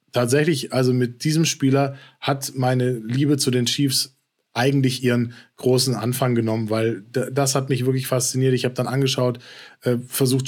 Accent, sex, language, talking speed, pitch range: German, male, German, 155 wpm, 120-135 Hz